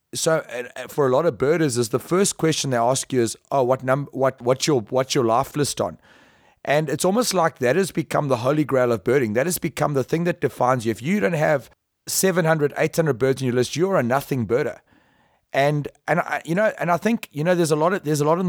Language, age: English, 30-49